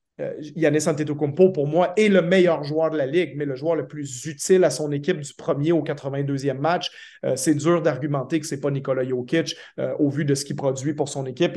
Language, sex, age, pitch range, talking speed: French, male, 30-49, 140-170 Hz, 240 wpm